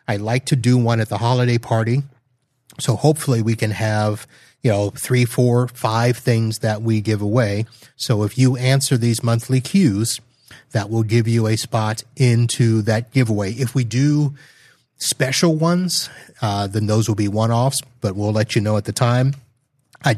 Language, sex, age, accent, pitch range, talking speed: English, male, 30-49, American, 110-130 Hz, 180 wpm